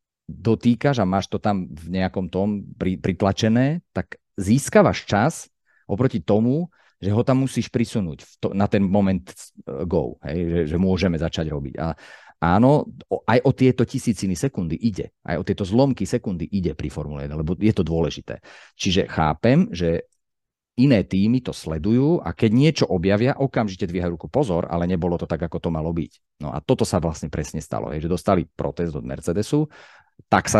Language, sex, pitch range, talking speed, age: Slovak, male, 85-120 Hz, 175 wpm, 40-59